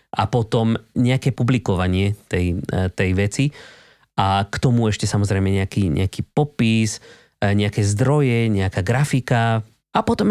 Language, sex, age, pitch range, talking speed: Slovak, male, 30-49, 100-130 Hz, 120 wpm